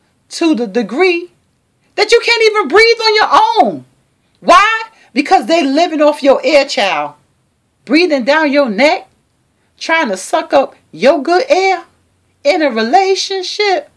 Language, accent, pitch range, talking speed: English, American, 190-285 Hz, 140 wpm